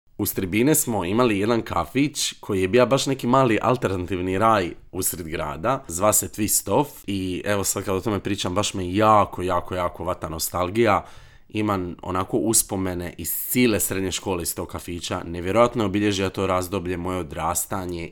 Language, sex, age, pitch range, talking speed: Croatian, male, 30-49, 90-110 Hz, 165 wpm